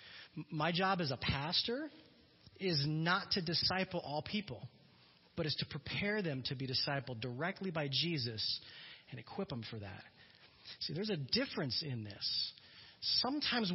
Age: 40-59